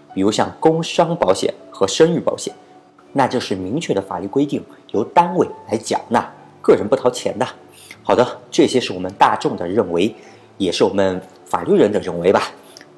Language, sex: Chinese, male